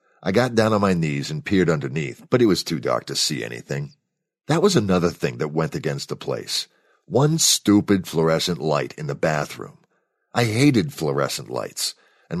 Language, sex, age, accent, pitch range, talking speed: English, male, 50-69, American, 80-120 Hz, 185 wpm